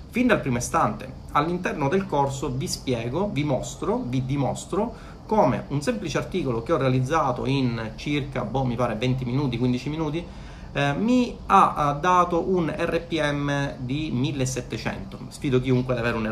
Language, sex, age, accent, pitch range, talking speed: Italian, male, 30-49, native, 125-155 Hz, 155 wpm